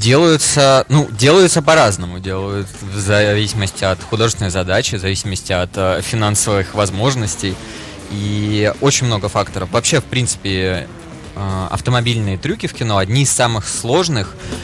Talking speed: 125 wpm